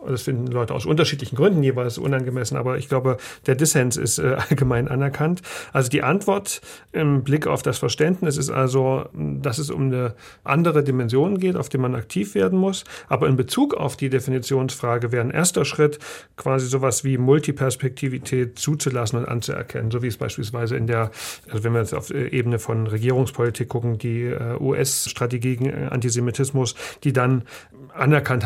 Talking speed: 165 wpm